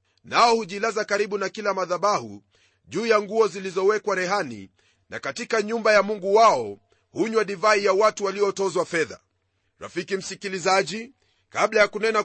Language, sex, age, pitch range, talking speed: Swahili, male, 40-59, 185-215 Hz, 135 wpm